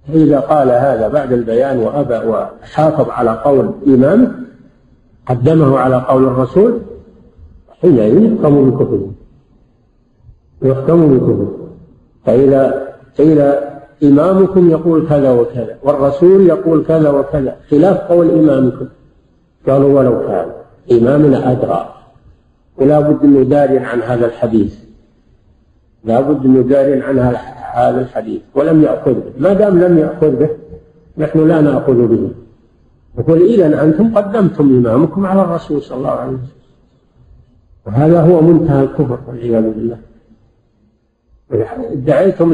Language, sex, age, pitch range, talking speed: Arabic, male, 50-69, 120-160 Hz, 110 wpm